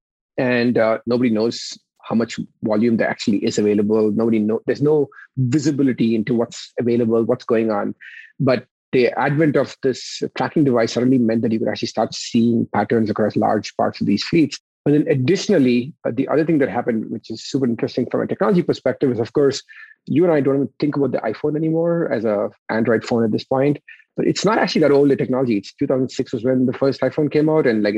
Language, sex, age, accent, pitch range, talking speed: English, male, 30-49, Indian, 115-150 Hz, 215 wpm